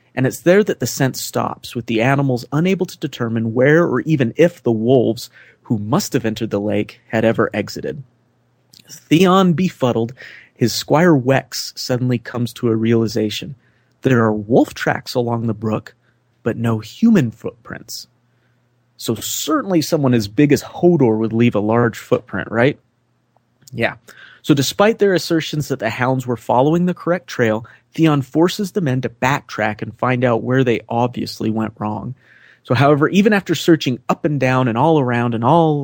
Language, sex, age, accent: English, male, 30-49, American